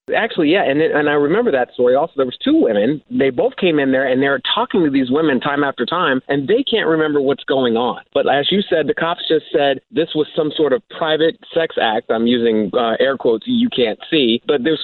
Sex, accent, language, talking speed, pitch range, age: male, American, English, 245 wpm, 135-185 Hz, 30-49